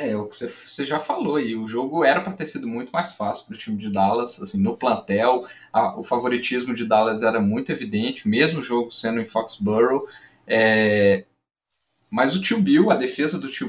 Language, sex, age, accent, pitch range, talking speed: Portuguese, male, 10-29, Brazilian, 115-170 Hz, 195 wpm